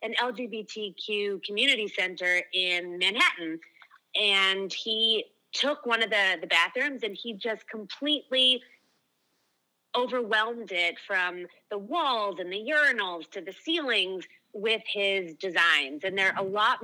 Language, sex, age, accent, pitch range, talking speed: English, female, 30-49, American, 180-225 Hz, 130 wpm